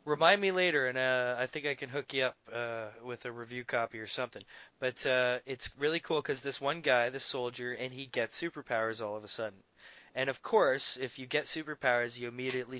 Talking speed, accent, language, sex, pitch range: 220 wpm, American, English, male, 120-145 Hz